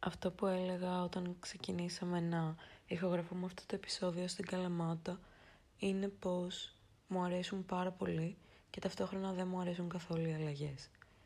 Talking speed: 140 wpm